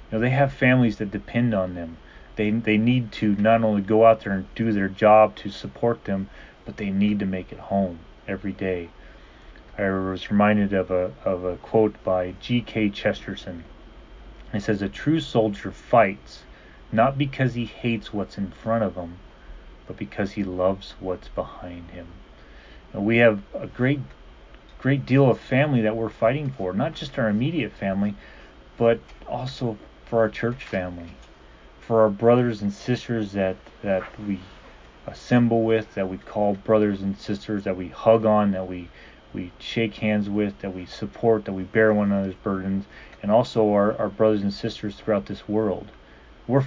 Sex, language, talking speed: male, English, 175 wpm